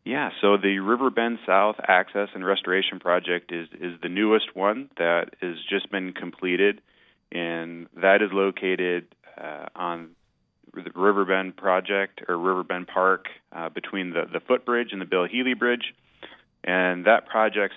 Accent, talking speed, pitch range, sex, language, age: American, 160 wpm, 85-100 Hz, male, English, 30-49